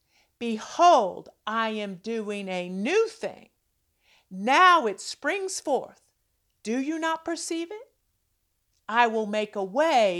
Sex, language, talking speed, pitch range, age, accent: female, English, 125 wpm, 180-285 Hz, 50-69, American